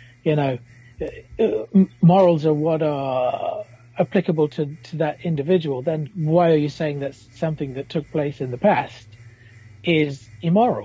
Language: English